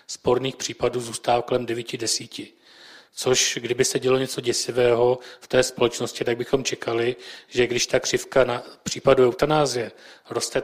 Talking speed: 145 wpm